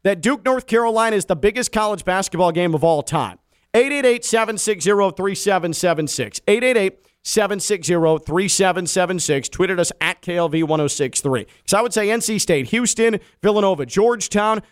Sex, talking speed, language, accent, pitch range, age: male, 115 wpm, English, American, 145-195 Hz, 40-59